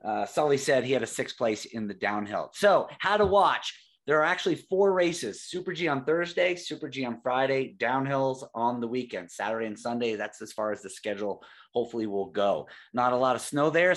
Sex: male